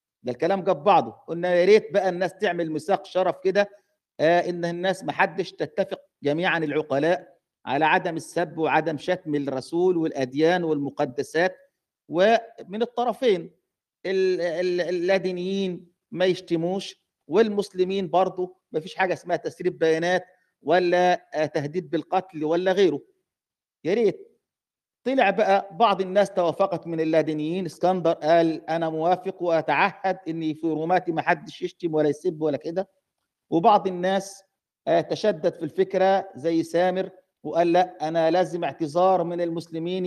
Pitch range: 165-190 Hz